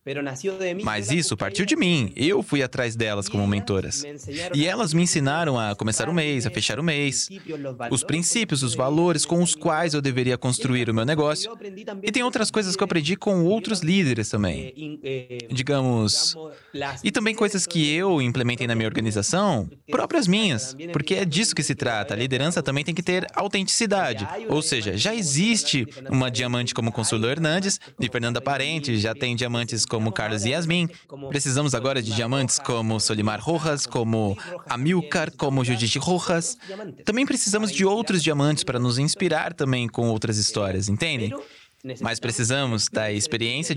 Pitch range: 120-175 Hz